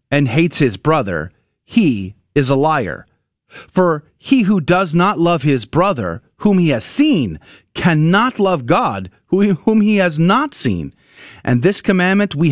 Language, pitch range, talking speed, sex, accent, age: English, 130-185 Hz, 155 wpm, male, American, 40-59